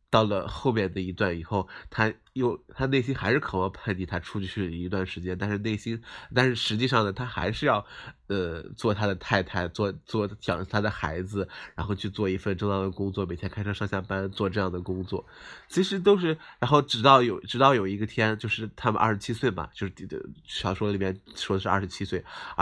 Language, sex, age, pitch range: Chinese, male, 20-39, 95-110 Hz